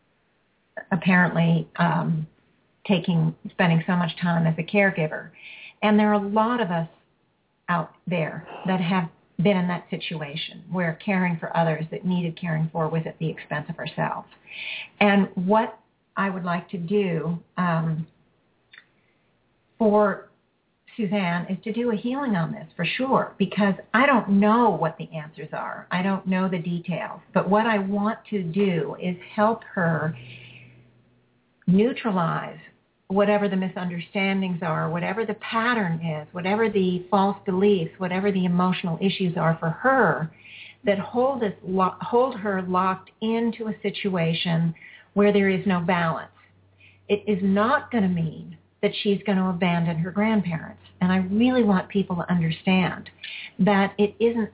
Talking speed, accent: 150 wpm, American